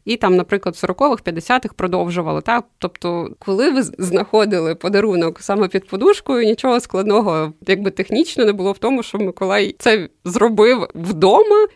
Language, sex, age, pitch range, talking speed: Ukrainian, female, 20-39, 175-215 Hz, 150 wpm